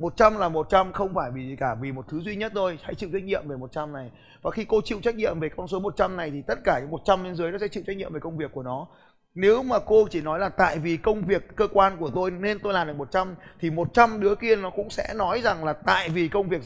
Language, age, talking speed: Vietnamese, 20-39, 290 wpm